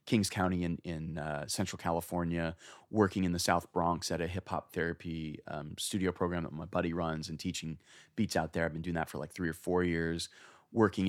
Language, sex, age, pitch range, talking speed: English, male, 30-49, 85-100 Hz, 215 wpm